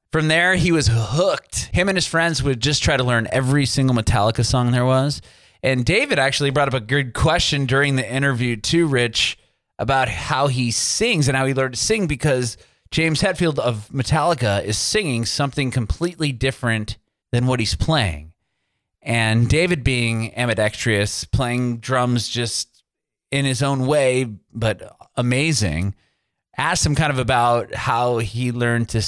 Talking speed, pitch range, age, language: 165 wpm, 110-145 Hz, 30-49, English